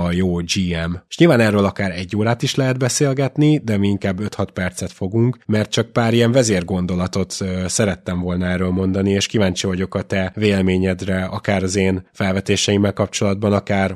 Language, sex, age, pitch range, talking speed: Hungarian, male, 20-39, 95-115 Hz, 170 wpm